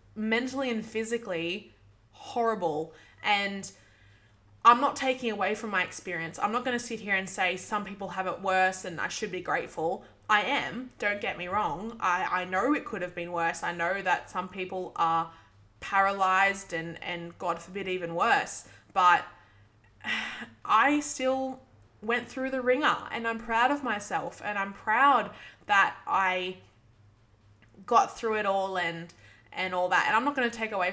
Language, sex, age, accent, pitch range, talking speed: English, female, 20-39, Australian, 180-235 Hz, 175 wpm